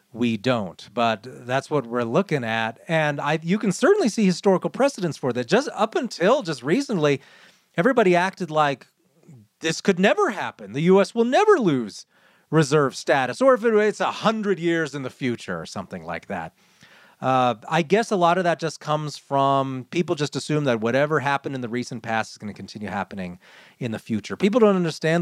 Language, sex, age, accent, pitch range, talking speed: English, male, 30-49, American, 135-195 Hz, 190 wpm